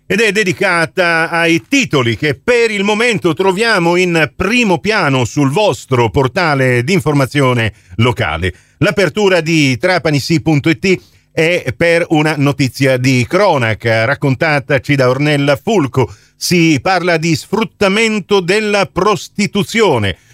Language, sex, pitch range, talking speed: Italian, male, 130-185 Hz, 110 wpm